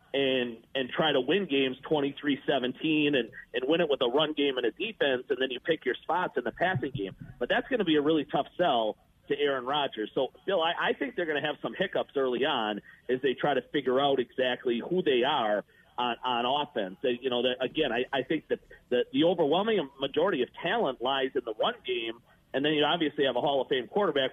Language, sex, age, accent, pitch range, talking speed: English, male, 40-59, American, 130-170 Hz, 240 wpm